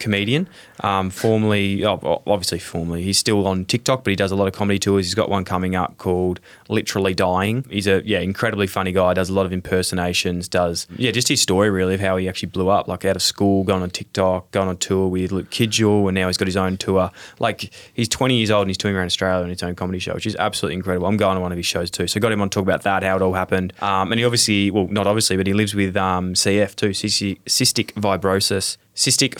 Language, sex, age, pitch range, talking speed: English, male, 20-39, 95-105 Hz, 255 wpm